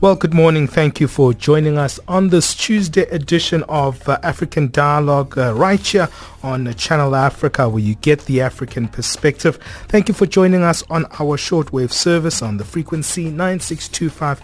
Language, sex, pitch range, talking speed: English, male, 125-155 Hz, 170 wpm